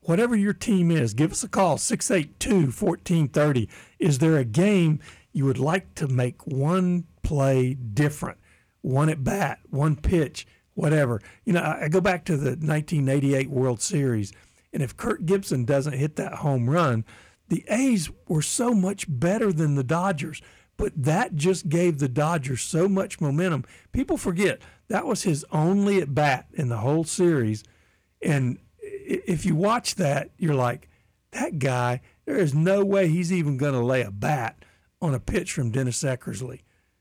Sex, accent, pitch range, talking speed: male, American, 130-185 Hz, 165 wpm